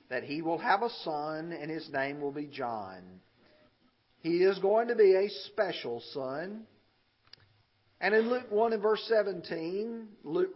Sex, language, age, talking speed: male, English, 50-69, 160 wpm